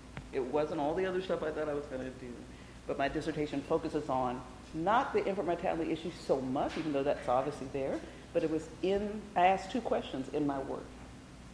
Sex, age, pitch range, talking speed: female, 40-59, 140-185 Hz, 215 wpm